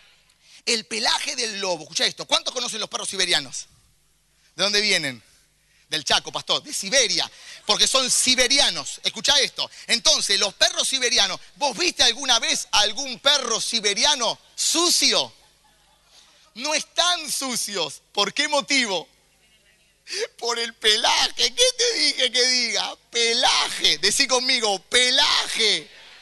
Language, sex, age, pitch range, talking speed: English, male, 30-49, 165-240 Hz, 125 wpm